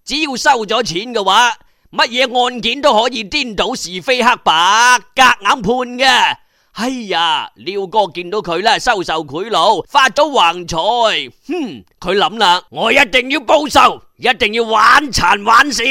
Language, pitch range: Chinese, 195-275 Hz